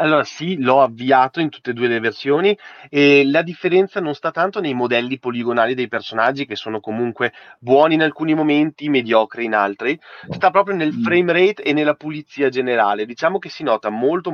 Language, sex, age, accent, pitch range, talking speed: Italian, male, 30-49, native, 120-155 Hz, 190 wpm